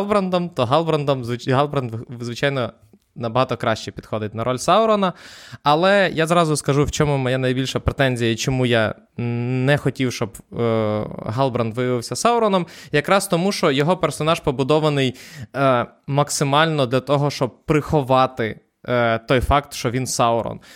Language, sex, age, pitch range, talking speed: Ukrainian, male, 20-39, 115-145 Hz, 140 wpm